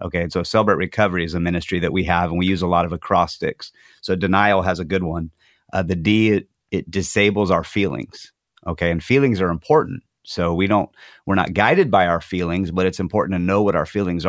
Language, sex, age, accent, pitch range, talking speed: English, male, 30-49, American, 90-105 Hz, 225 wpm